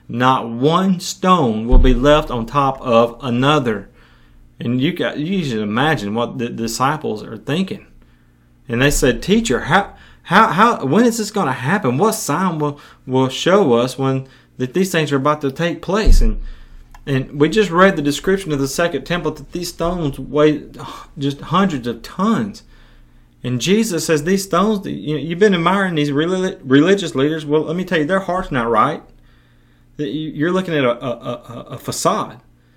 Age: 30-49